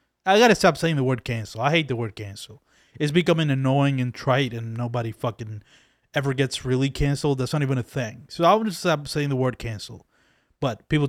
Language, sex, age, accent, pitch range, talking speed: English, male, 20-39, American, 135-170 Hz, 215 wpm